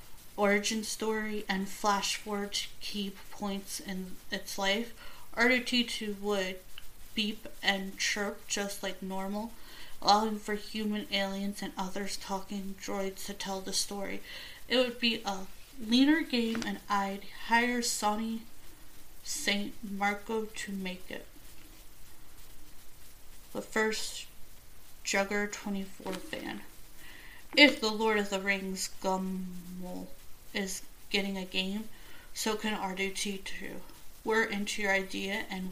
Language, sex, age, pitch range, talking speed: English, female, 30-49, 195-220 Hz, 120 wpm